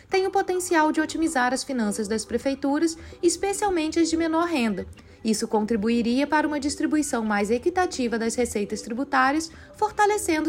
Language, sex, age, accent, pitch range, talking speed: Portuguese, female, 20-39, Brazilian, 235-330 Hz, 145 wpm